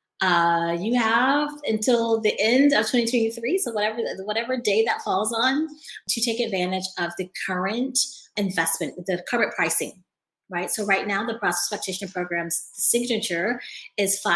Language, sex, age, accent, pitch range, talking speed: English, female, 30-49, American, 185-240 Hz, 145 wpm